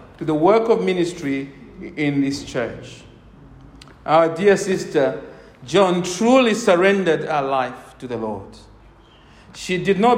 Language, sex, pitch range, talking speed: English, male, 150-205 Hz, 130 wpm